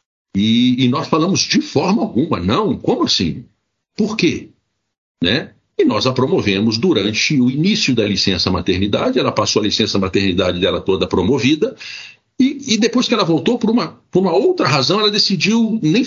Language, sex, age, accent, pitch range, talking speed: Portuguese, male, 60-79, Brazilian, 110-150 Hz, 170 wpm